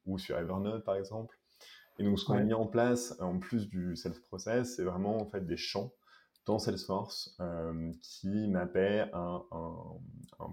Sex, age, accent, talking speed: male, 20-39, French, 175 wpm